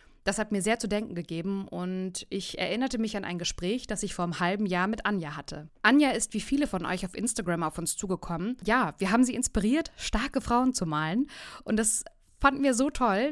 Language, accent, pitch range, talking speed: German, German, 175-220 Hz, 220 wpm